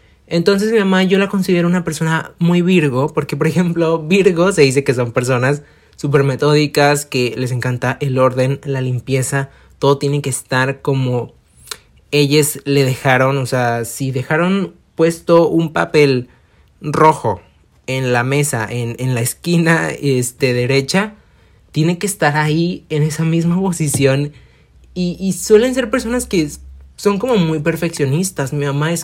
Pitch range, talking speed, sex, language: 130-170 Hz, 150 wpm, male, Spanish